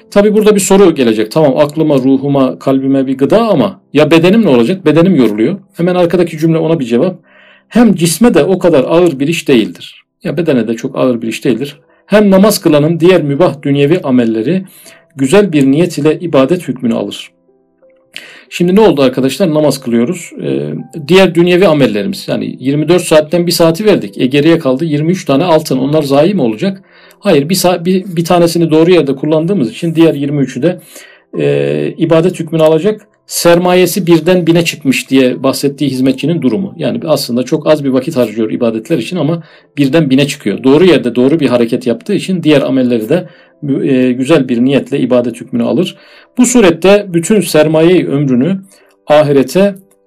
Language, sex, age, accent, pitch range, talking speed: Turkish, male, 50-69, native, 135-175 Hz, 170 wpm